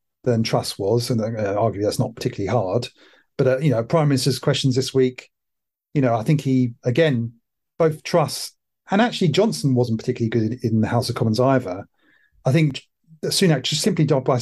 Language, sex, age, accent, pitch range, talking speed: English, male, 40-59, British, 115-135 Hz, 185 wpm